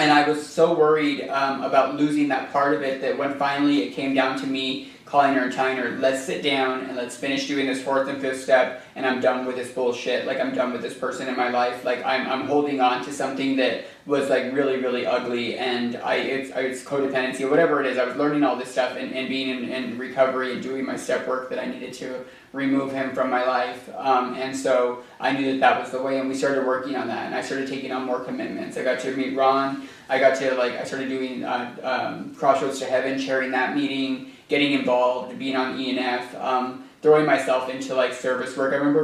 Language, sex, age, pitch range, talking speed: English, male, 20-39, 130-135 Hz, 240 wpm